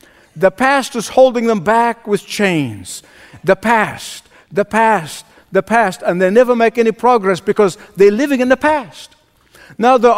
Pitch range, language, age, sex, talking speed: 205-255 Hz, English, 60-79, male, 165 wpm